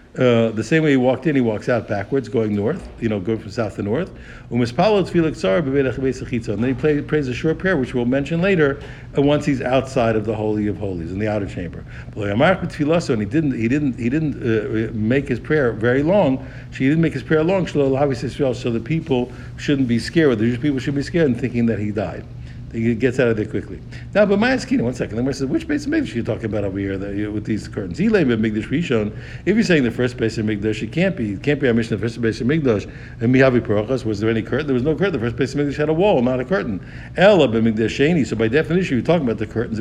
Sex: male